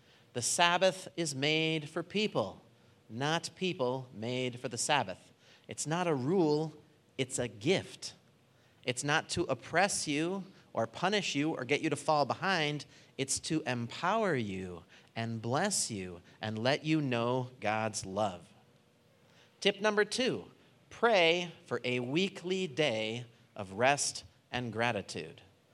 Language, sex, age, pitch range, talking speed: English, male, 30-49, 115-160 Hz, 135 wpm